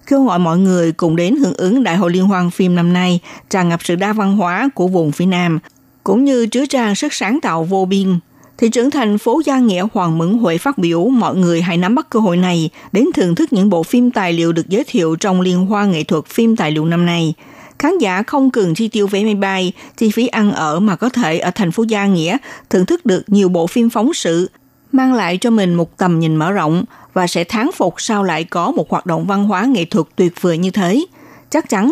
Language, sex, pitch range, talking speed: Vietnamese, female, 170-225 Hz, 250 wpm